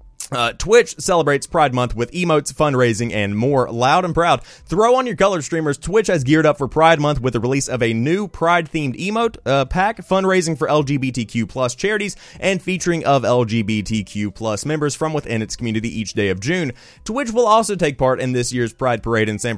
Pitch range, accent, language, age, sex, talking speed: 120-170 Hz, American, English, 30-49, male, 200 wpm